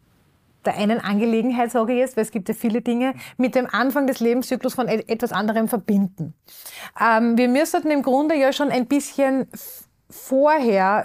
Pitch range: 200-245 Hz